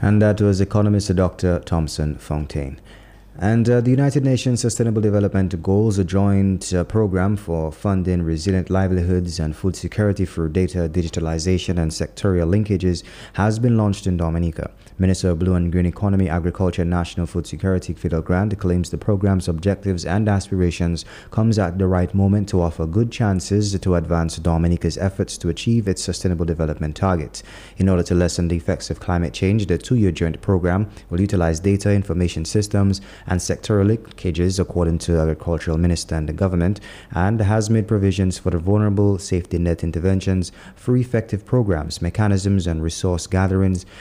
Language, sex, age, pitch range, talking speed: English, male, 20-39, 85-100 Hz, 165 wpm